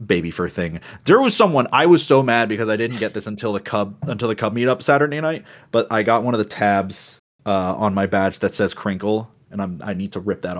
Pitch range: 90-110 Hz